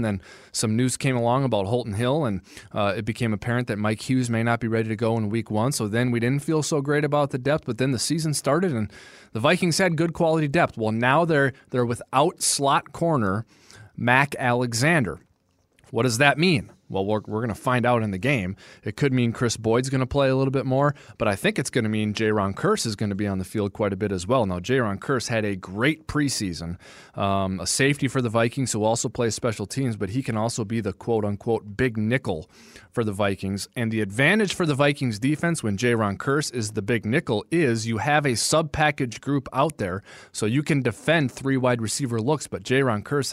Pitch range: 110-140 Hz